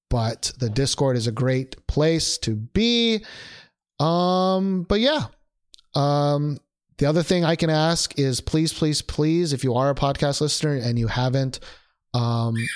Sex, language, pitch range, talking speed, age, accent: male, English, 120-185 Hz, 155 wpm, 30-49, American